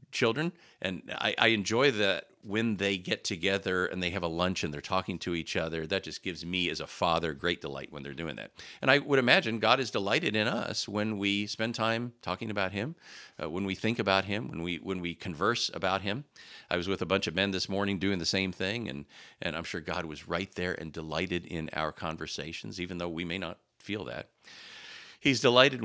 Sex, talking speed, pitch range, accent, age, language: male, 225 wpm, 85-110 Hz, American, 40-59, English